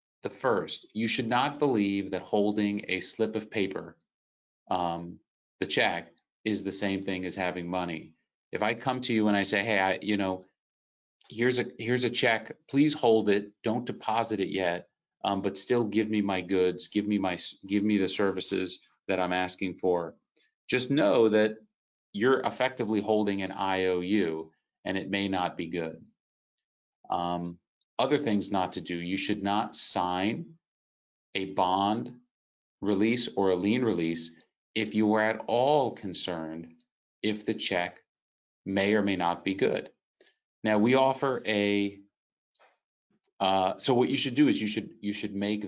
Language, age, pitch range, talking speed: English, 30-49, 90-110 Hz, 165 wpm